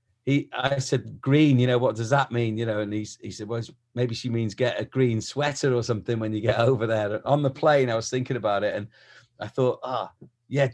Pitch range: 115-130 Hz